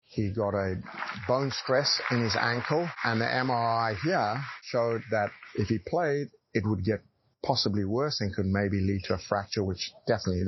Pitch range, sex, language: 100-120 Hz, male, English